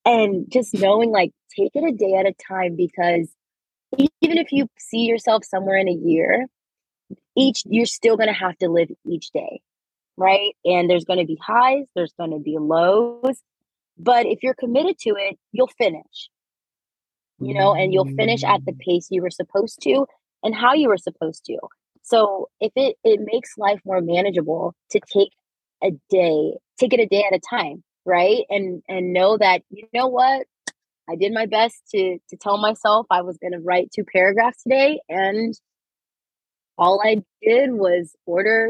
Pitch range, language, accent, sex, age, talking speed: 180-240 Hz, English, American, female, 20-39, 185 wpm